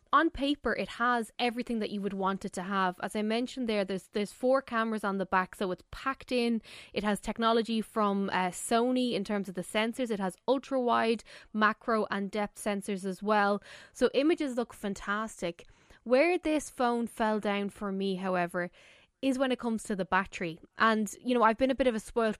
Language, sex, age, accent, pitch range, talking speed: English, female, 10-29, Irish, 200-240 Hz, 205 wpm